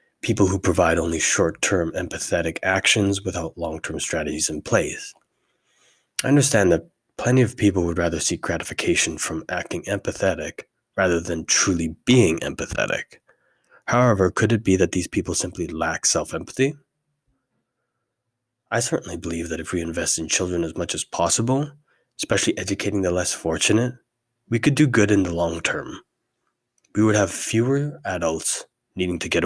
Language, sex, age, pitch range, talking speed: English, male, 20-39, 85-115 Hz, 150 wpm